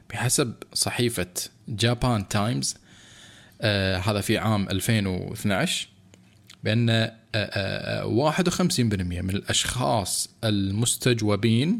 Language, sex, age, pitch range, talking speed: Arabic, male, 20-39, 105-130 Hz, 75 wpm